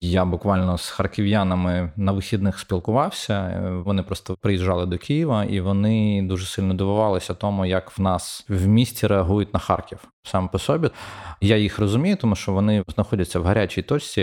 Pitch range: 90-105 Hz